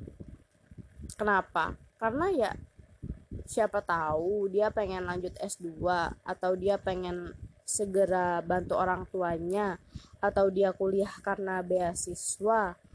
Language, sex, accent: Indonesian, female, native